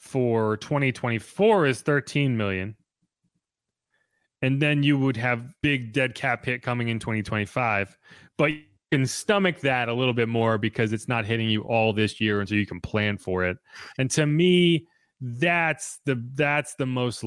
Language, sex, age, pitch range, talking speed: English, male, 30-49, 110-140 Hz, 170 wpm